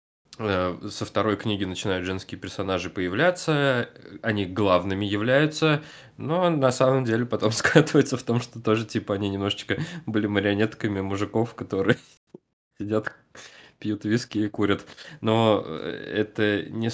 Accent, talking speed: native, 125 wpm